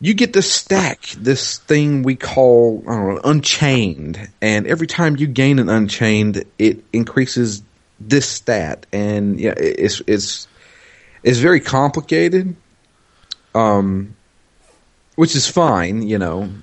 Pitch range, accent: 85-120 Hz, American